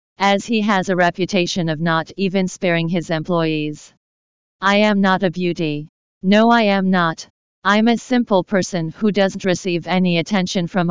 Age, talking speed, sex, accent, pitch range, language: 40-59, 165 wpm, female, American, 165-195 Hz, English